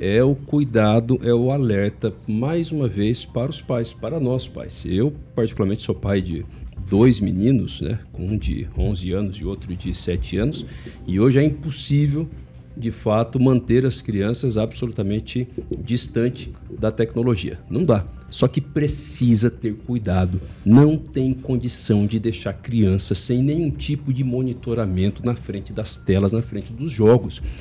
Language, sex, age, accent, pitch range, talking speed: Portuguese, male, 50-69, Brazilian, 110-165 Hz, 155 wpm